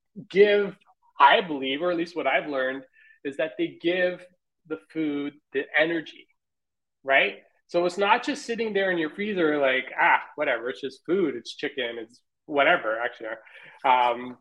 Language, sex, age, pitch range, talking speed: English, male, 30-49, 150-230 Hz, 160 wpm